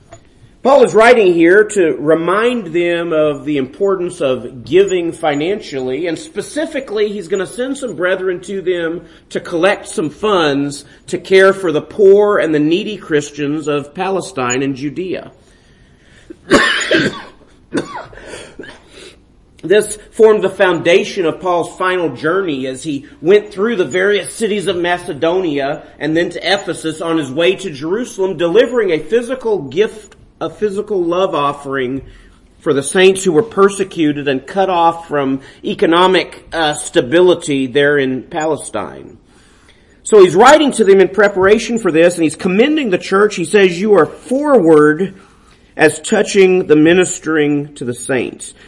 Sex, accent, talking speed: male, American, 145 wpm